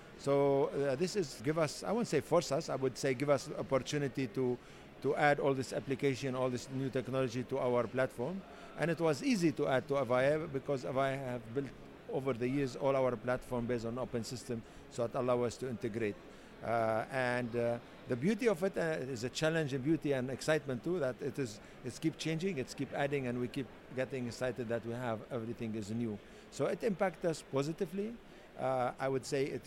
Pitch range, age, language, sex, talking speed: 120-140 Hz, 50-69, English, male, 205 wpm